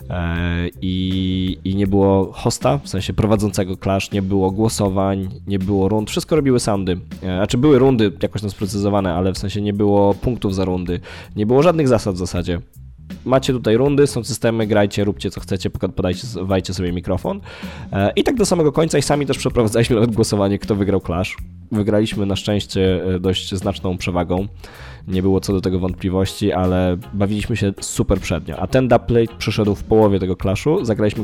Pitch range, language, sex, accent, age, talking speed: 90-105 Hz, Polish, male, native, 20-39, 175 wpm